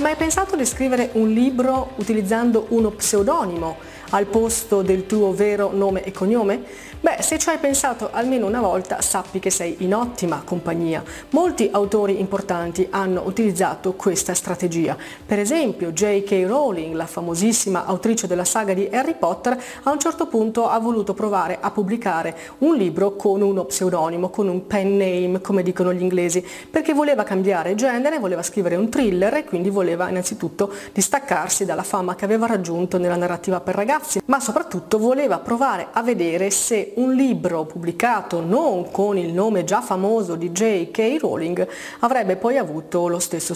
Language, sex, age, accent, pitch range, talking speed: Italian, female, 30-49, native, 180-225 Hz, 165 wpm